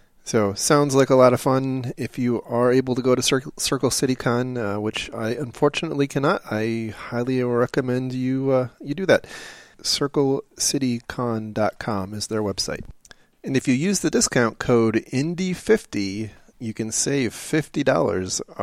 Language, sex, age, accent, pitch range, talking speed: English, male, 30-49, American, 115-140 Hz, 150 wpm